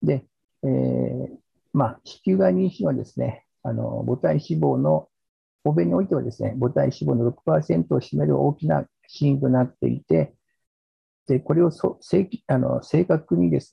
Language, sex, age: Japanese, male, 50-69